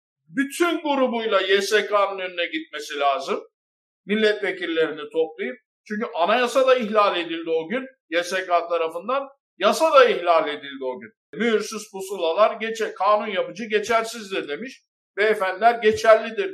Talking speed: 115 wpm